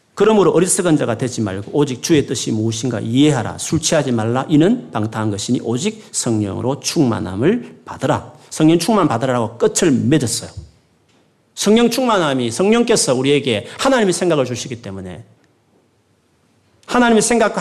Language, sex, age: Korean, male, 40-59